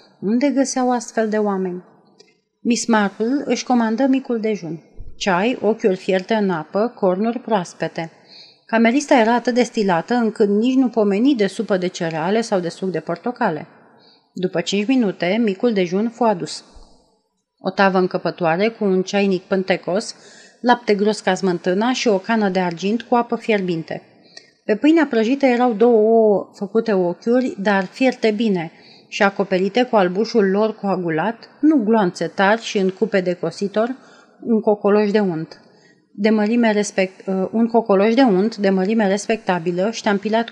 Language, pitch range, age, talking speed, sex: Romanian, 185-235 Hz, 30-49, 150 wpm, female